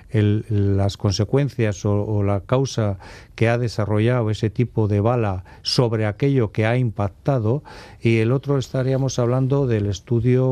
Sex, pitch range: male, 105-120 Hz